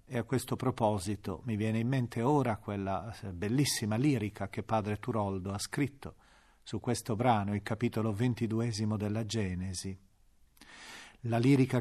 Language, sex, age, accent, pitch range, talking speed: Italian, male, 40-59, native, 105-150 Hz, 135 wpm